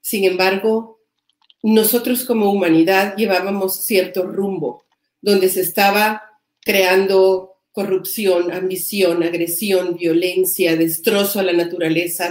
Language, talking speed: Spanish, 95 wpm